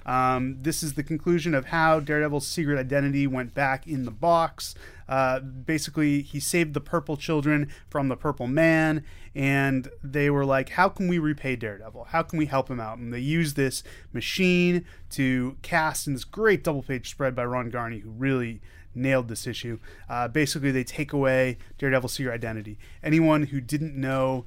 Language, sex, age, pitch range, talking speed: English, male, 30-49, 125-150 Hz, 180 wpm